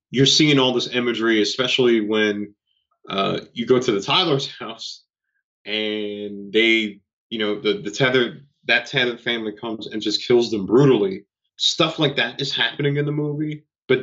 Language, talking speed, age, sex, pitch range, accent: English, 165 wpm, 30-49, male, 105-130 Hz, American